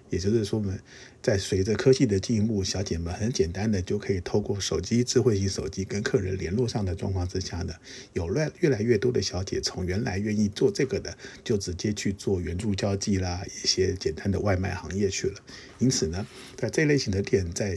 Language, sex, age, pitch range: Chinese, male, 50-69, 95-125 Hz